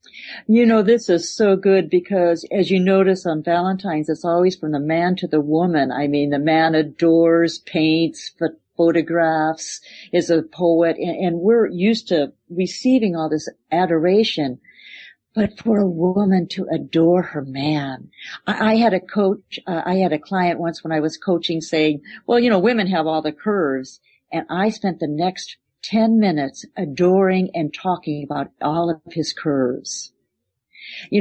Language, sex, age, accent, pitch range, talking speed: English, female, 50-69, American, 160-220 Hz, 165 wpm